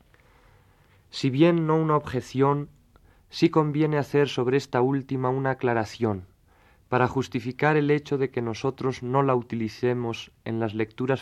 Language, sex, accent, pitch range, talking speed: Spanish, male, Spanish, 105-135 Hz, 140 wpm